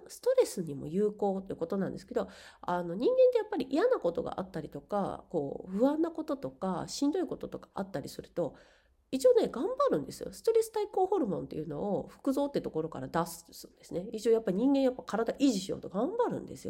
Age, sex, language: 40-59, female, Japanese